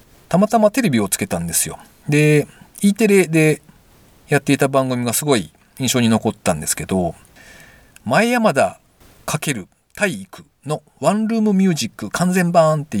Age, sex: 40-59, male